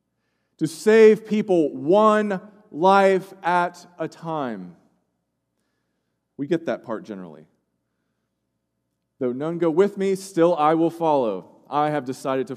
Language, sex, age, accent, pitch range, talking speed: English, male, 40-59, American, 130-190 Hz, 125 wpm